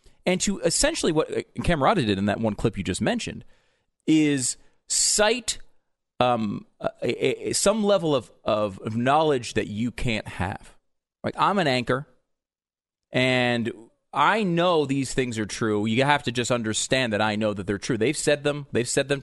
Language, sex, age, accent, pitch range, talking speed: English, male, 40-59, American, 120-200 Hz, 175 wpm